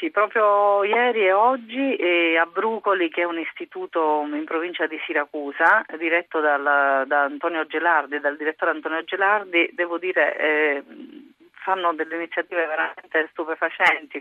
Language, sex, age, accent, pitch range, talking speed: Italian, female, 40-59, native, 155-190 Hz, 125 wpm